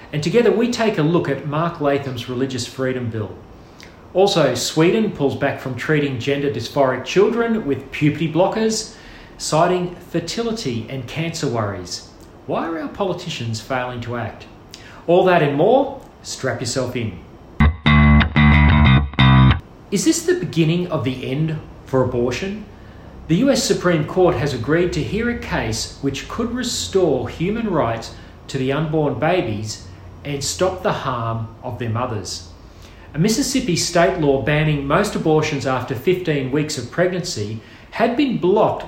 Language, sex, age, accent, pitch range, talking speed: English, male, 40-59, Australian, 120-180 Hz, 145 wpm